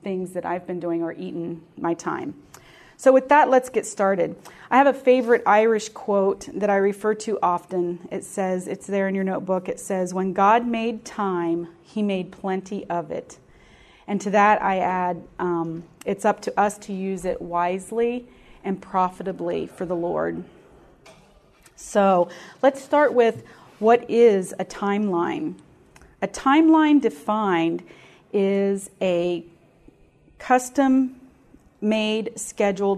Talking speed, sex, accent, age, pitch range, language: 140 wpm, female, American, 30-49, 185-225 Hz, English